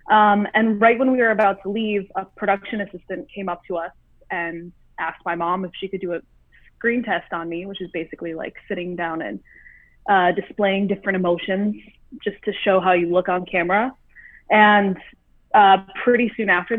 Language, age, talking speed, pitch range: English, 20-39, 190 wpm, 185-220 Hz